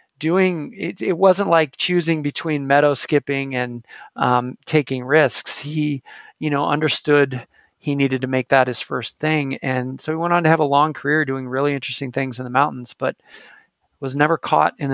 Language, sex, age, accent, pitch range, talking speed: English, male, 40-59, American, 130-150 Hz, 190 wpm